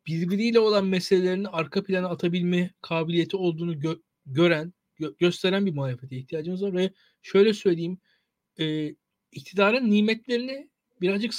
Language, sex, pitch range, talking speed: Turkish, male, 155-200 Hz, 120 wpm